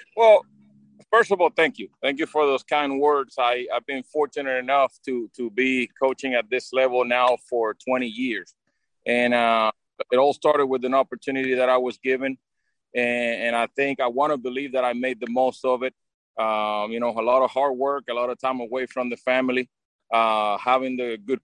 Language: English